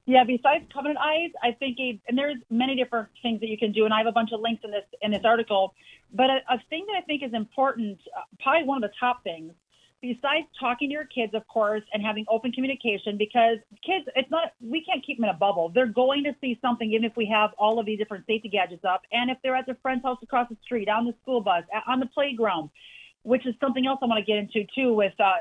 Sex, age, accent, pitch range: female, 30-49, American, 215-260 Hz